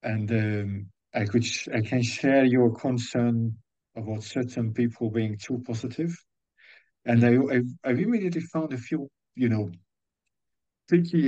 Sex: male